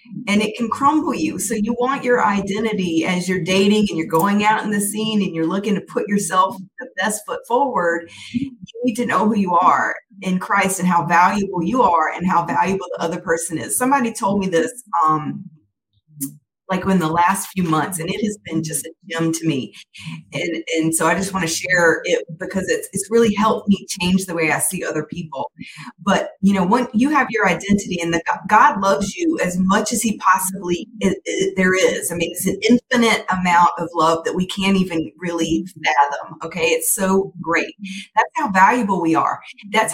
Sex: female